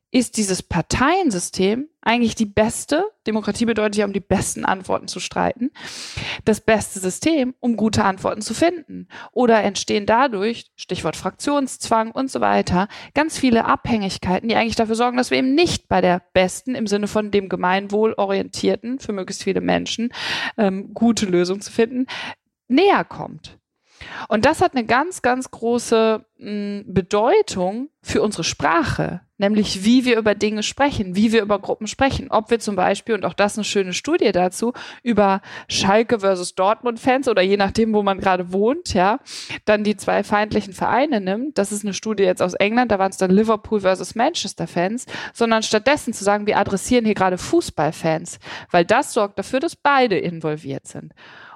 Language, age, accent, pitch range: German, 20-39, German, 190-240 Hz